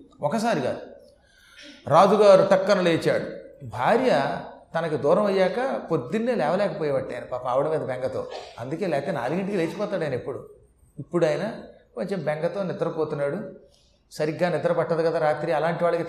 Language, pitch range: Telugu, 150-190 Hz